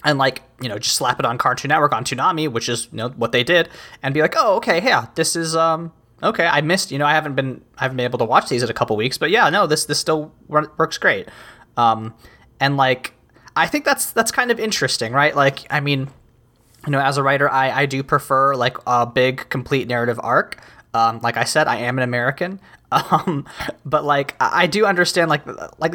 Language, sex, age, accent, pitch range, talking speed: English, male, 20-39, American, 125-165 Hz, 230 wpm